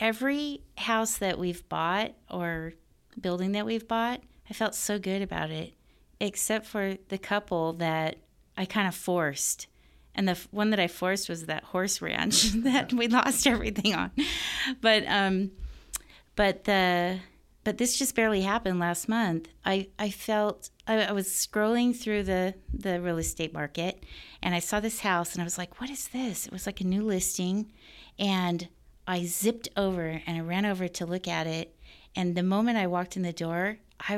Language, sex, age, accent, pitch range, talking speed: English, female, 30-49, American, 175-210 Hz, 180 wpm